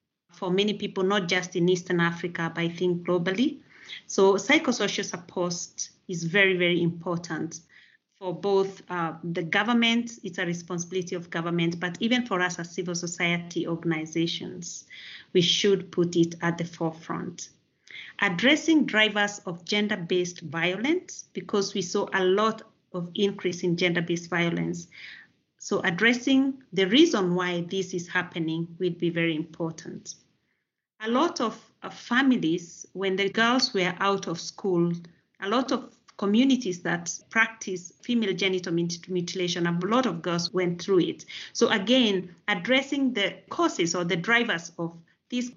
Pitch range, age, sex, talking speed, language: 170-205 Hz, 30-49, female, 140 wpm, Finnish